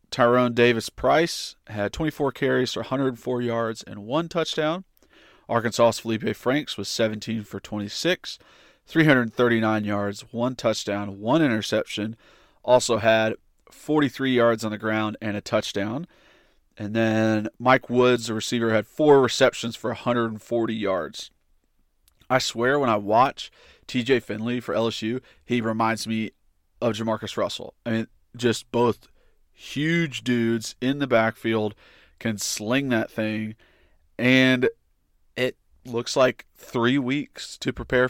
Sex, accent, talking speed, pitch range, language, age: male, American, 130 wpm, 110-125 Hz, English, 40-59